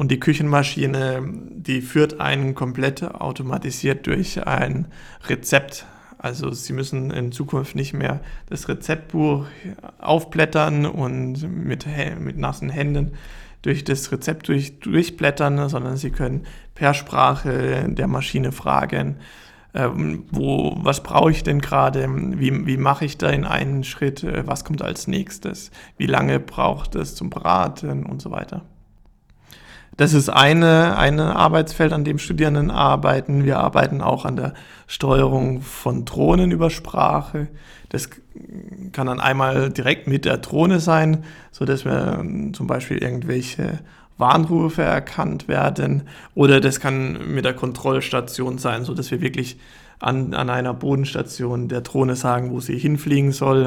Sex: male